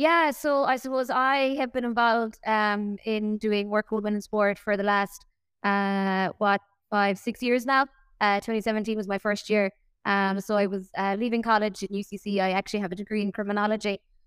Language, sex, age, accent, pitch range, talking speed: English, female, 20-39, Irish, 195-225 Hz, 195 wpm